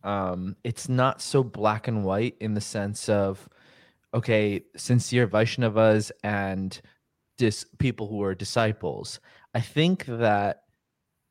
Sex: male